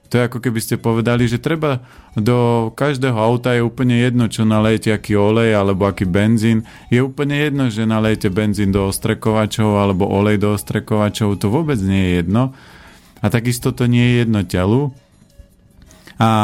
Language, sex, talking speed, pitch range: Slovak, male, 170 wpm, 105-125 Hz